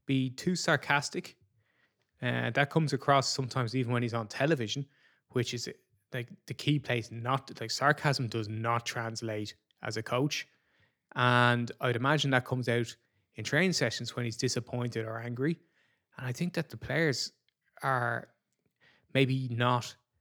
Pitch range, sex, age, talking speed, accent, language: 115-140 Hz, male, 20-39, 150 wpm, Irish, English